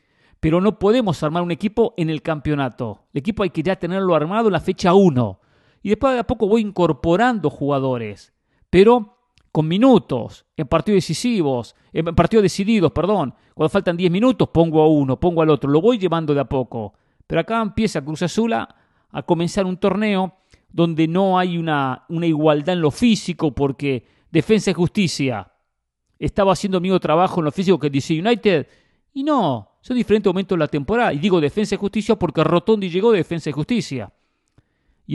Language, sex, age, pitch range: English, male, 50-69, 145-195 Hz